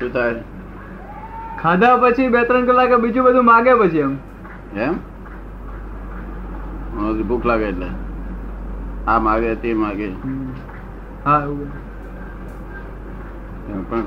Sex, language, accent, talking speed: male, English, Indian, 95 wpm